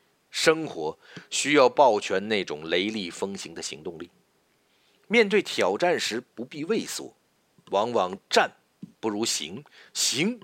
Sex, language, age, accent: male, Chinese, 50-69, native